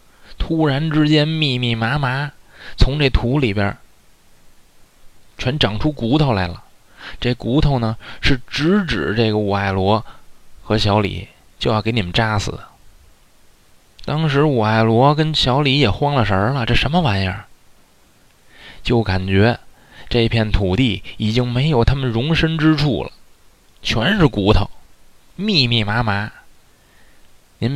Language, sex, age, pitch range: Chinese, male, 20-39, 100-130 Hz